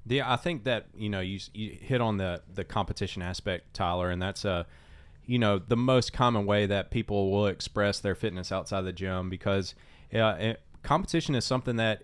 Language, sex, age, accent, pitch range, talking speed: English, male, 30-49, American, 95-110 Hz, 205 wpm